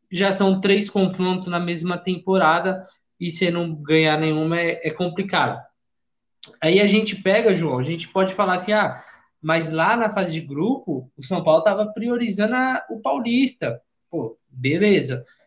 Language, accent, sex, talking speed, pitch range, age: Portuguese, Brazilian, male, 165 wpm, 150-195 Hz, 20-39